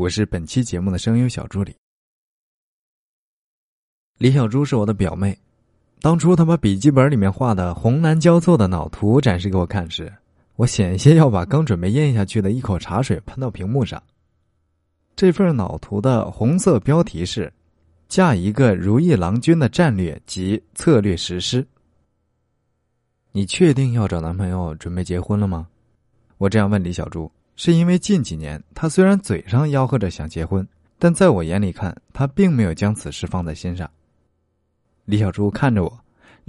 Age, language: 20-39, Chinese